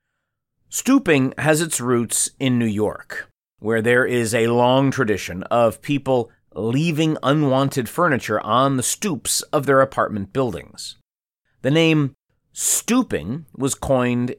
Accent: American